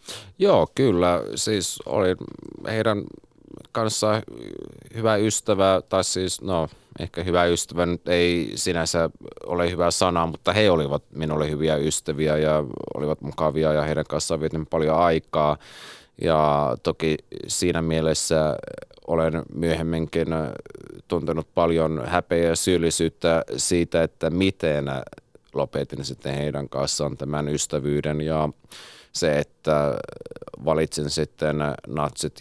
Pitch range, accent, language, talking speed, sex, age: 75-90 Hz, native, Finnish, 110 wpm, male, 30-49